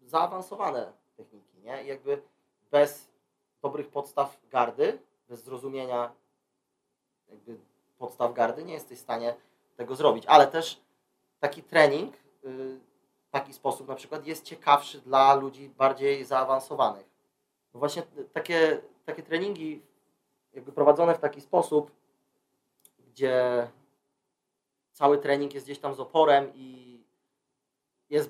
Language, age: Polish, 30-49